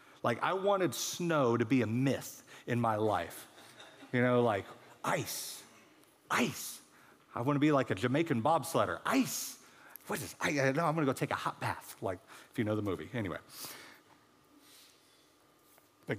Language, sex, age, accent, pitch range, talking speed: English, male, 40-59, American, 105-135 Hz, 155 wpm